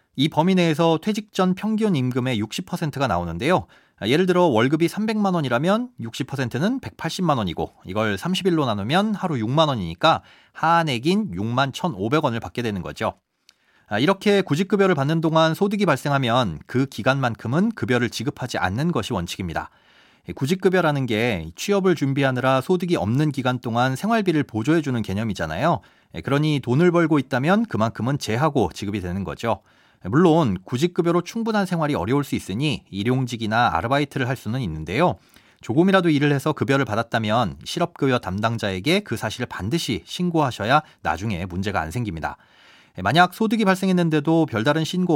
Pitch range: 115-170 Hz